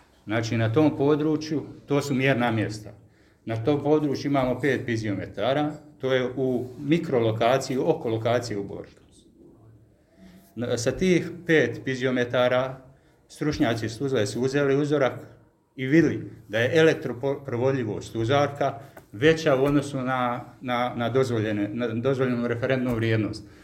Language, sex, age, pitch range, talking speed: Croatian, male, 50-69, 115-150 Hz, 120 wpm